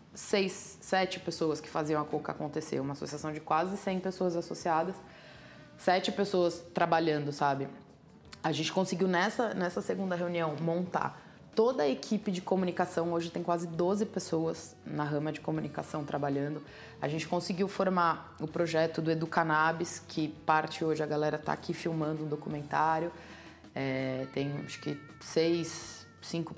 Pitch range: 150-175 Hz